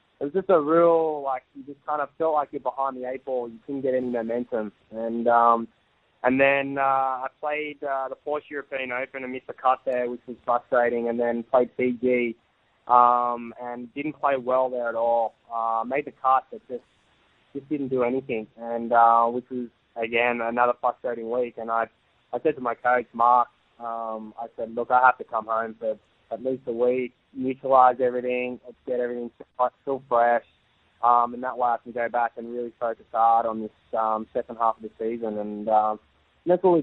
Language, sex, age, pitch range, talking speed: English, male, 20-39, 115-135 Hz, 205 wpm